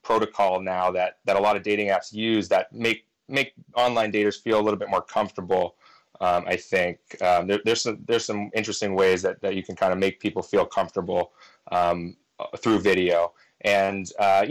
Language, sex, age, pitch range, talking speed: English, male, 30-49, 100-115 Hz, 195 wpm